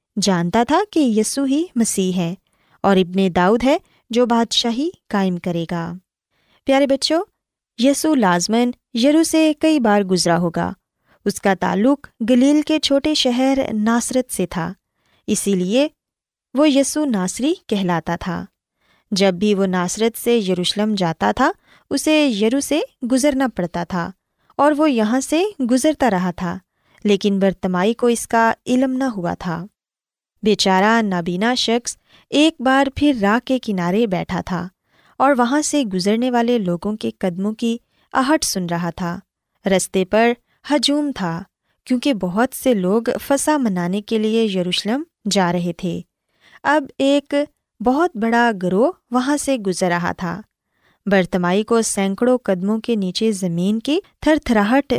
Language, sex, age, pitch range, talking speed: Urdu, female, 20-39, 190-270 Hz, 145 wpm